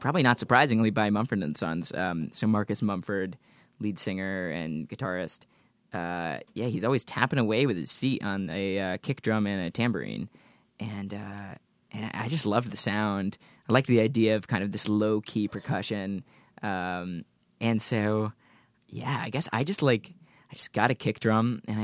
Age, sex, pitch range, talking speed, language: 20-39, male, 100-120 Hz, 185 wpm, English